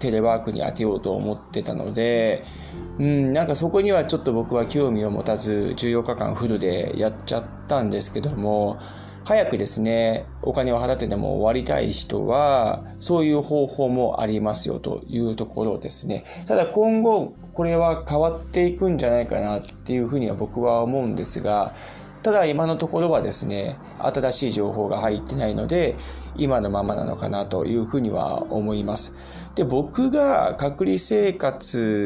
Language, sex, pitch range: Japanese, male, 105-140 Hz